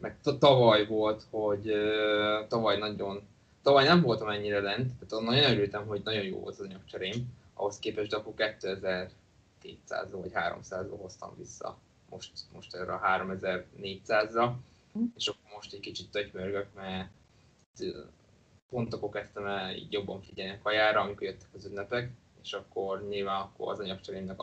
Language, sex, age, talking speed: Hungarian, male, 20-39, 135 wpm